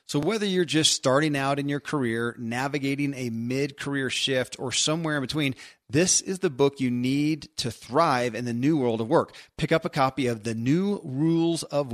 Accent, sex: American, male